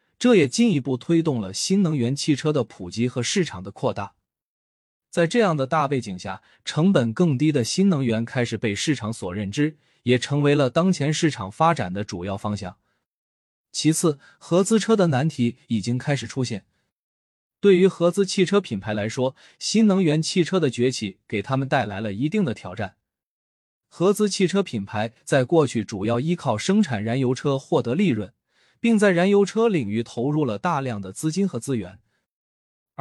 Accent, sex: native, male